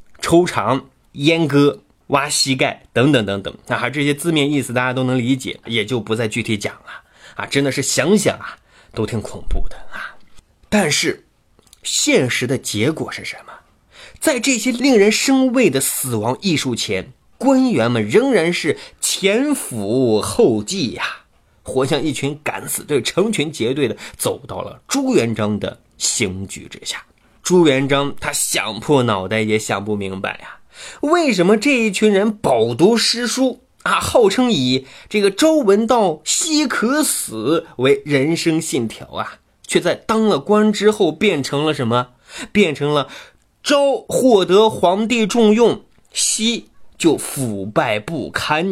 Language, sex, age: Chinese, male, 20-39